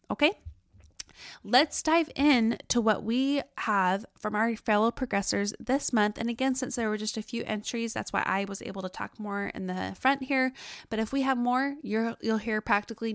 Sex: female